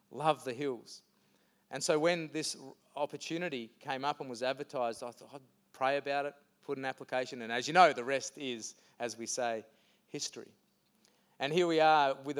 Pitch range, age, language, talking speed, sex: 130-155 Hz, 30-49, English, 190 wpm, male